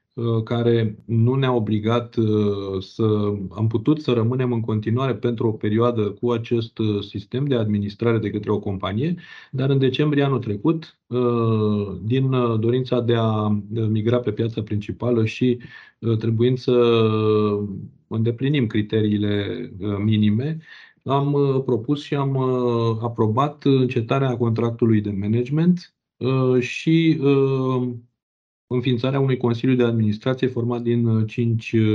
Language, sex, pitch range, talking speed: Romanian, male, 110-130 Hz, 115 wpm